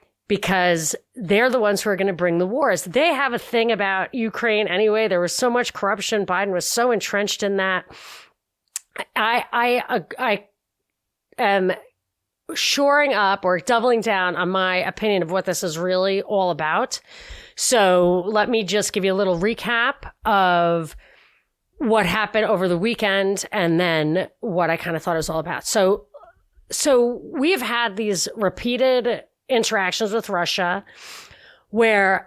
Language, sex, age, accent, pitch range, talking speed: English, female, 30-49, American, 175-225 Hz, 160 wpm